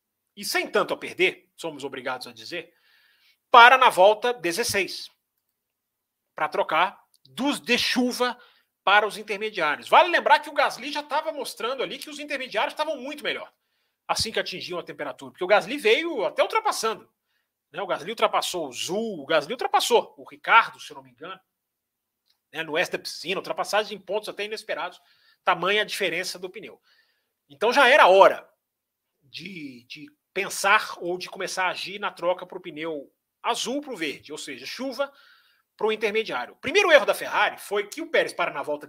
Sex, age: male, 40-59